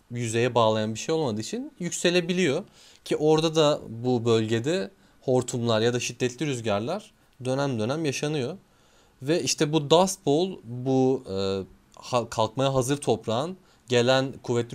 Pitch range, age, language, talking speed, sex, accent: 105-135 Hz, 30-49, Turkish, 130 wpm, male, native